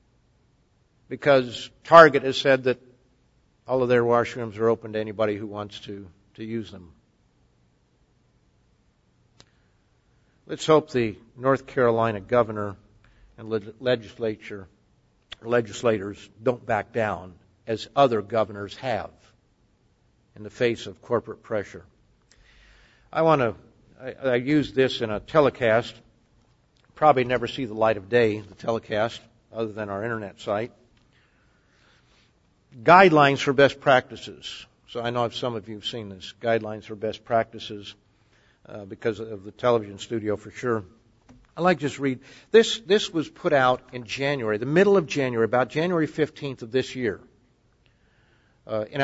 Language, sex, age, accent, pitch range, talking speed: English, male, 50-69, American, 110-135 Hz, 140 wpm